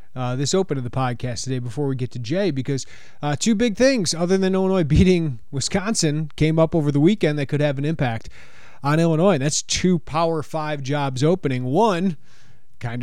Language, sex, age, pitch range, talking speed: English, male, 30-49, 130-170 Hz, 200 wpm